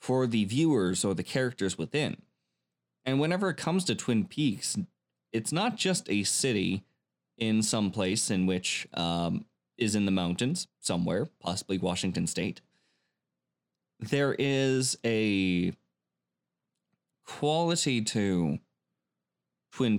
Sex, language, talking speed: male, English, 115 wpm